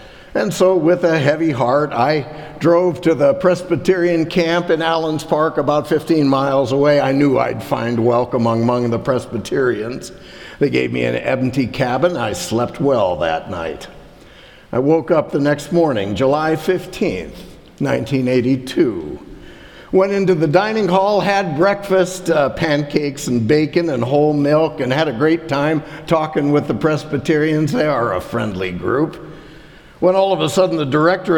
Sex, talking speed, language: male, 155 wpm, English